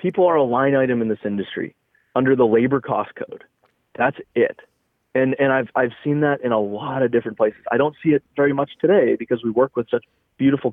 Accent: American